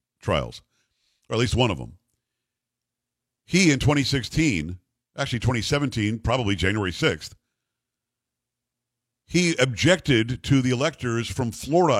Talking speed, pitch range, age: 110 wpm, 115-140 Hz, 50-69